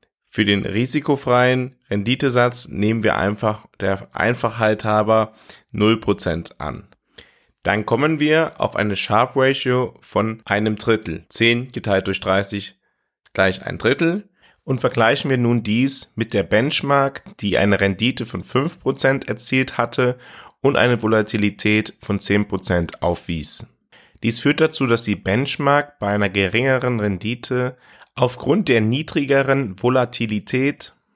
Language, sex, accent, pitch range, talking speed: German, male, German, 100-125 Hz, 120 wpm